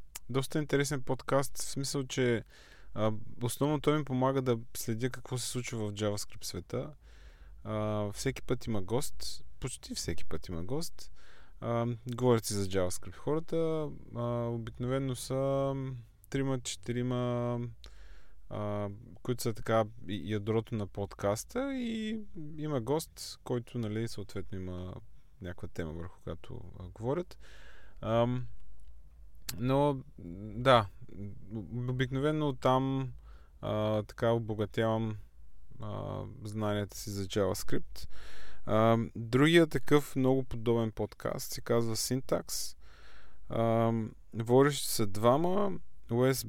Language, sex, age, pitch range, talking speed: Bulgarian, male, 20-39, 100-130 Hz, 105 wpm